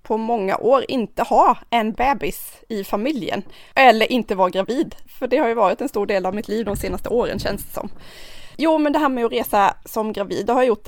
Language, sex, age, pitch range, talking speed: Swedish, female, 20-39, 205-250 Hz, 235 wpm